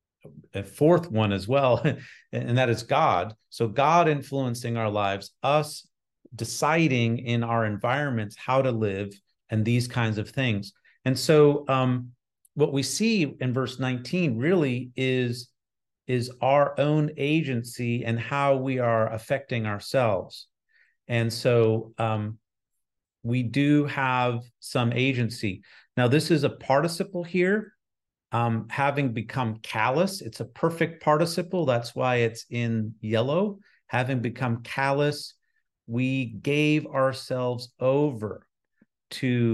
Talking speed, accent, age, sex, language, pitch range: 125 wpm, American, 40-59, male, English, 115-145 Hz